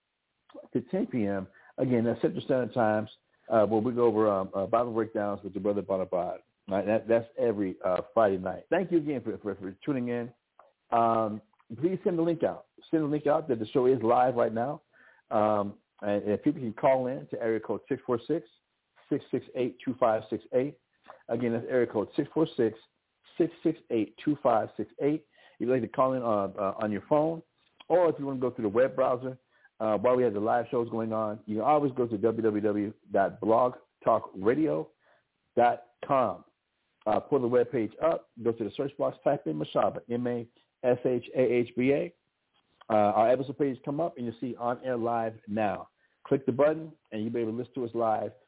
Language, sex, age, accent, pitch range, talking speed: English, male, 50-69, American, 110-135 Hz, 210 wpm